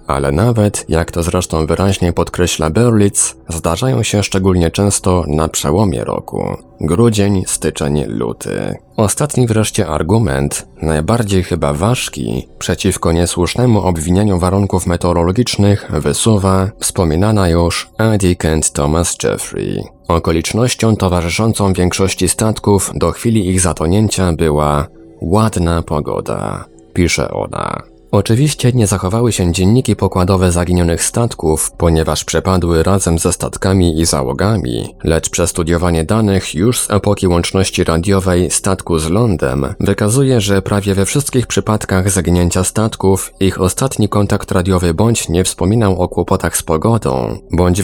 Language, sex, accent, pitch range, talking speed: Polish, male, native, 85-105 Hz, 120 wpm